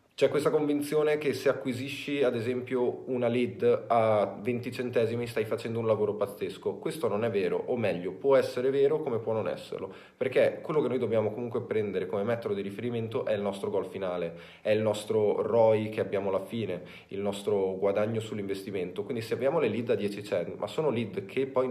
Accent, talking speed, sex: native, 200 wpm, male